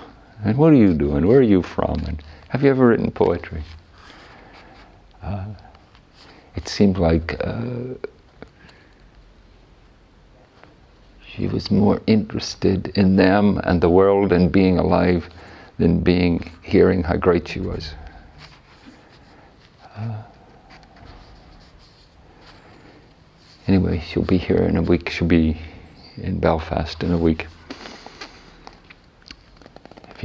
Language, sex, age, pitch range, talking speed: English, male, 50-69, 80-95 Hz, 110 wpm